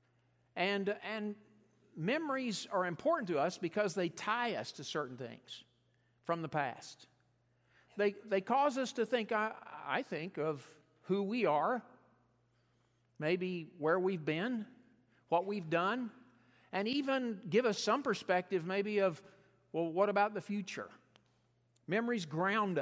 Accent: American